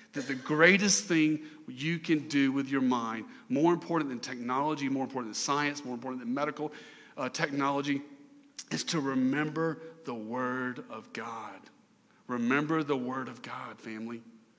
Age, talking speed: 40-59, 150 wpm